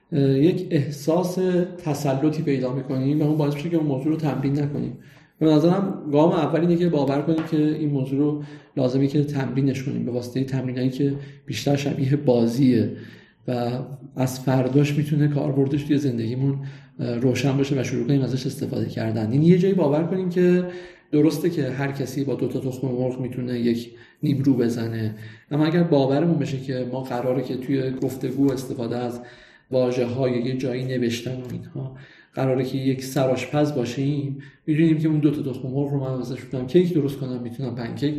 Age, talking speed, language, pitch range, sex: 40-59, 165 wpm, Persian, 125-150 Hz, male